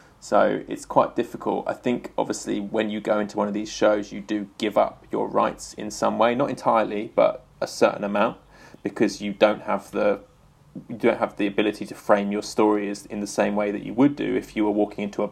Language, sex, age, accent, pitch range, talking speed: English, male, 20-39, British, 105-115 Hz, 225 wpm